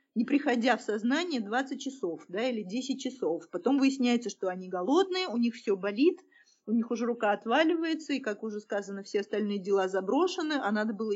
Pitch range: 205-285 Hz